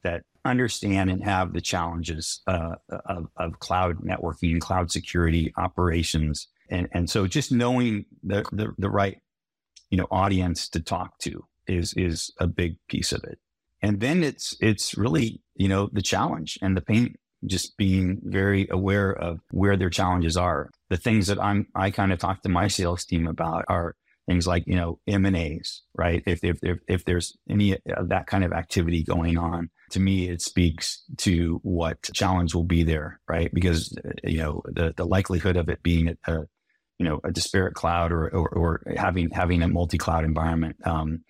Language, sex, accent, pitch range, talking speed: English, male, American, 85-95 Hz, 185 wpm